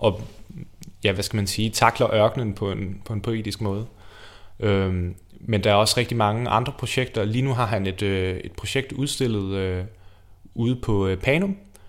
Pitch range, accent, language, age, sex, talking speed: 95-110 Hz, native, Danish, 30-49, male, 175 wpm